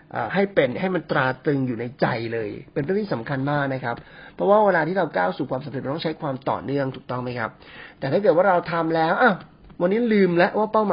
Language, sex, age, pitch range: Thai, male, 30-49, 130-180 Hz